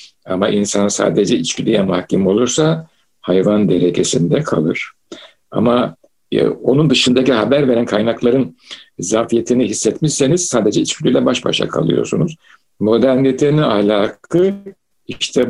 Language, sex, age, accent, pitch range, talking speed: Turkish, male, 60-79, native, 110-155 Hz, 100 wpm